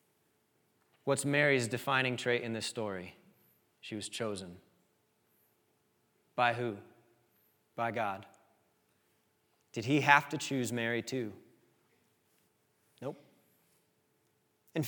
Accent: American